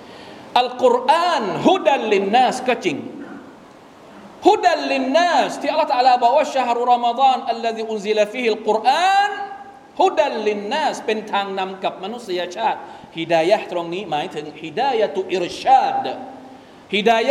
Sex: male